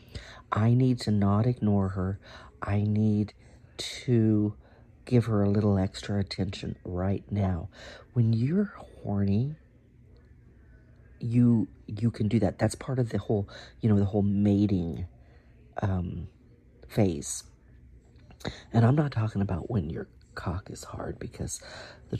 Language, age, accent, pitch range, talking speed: English, 40-59, American, 95-115 Hz, 130 wpm